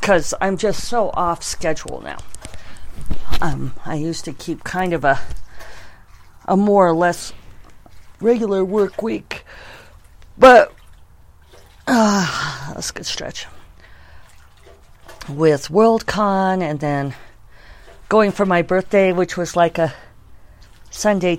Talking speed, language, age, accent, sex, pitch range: 115 wpm, English, 50-69, American, female, 140-190 Hz